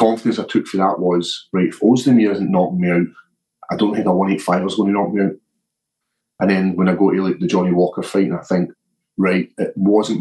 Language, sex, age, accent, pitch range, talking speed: English, male, 30-49, British, 90-100 Hz, 240 wpm